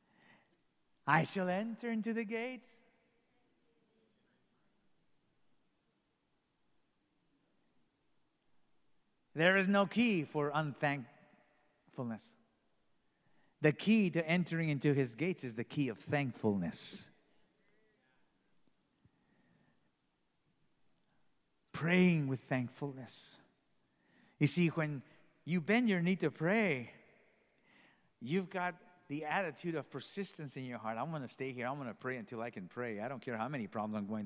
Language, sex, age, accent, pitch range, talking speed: English, male, 50-69, American, 125-170 Hz, 110 wpm